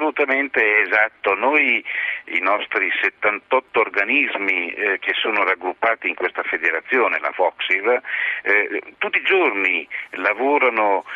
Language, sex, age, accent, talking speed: Italian, male, 50-69, native, 115 wpm